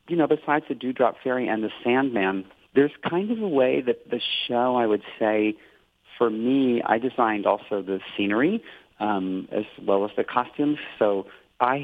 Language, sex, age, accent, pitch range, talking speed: English, male, 40-59, American, 100-130 Hz, 175 wpm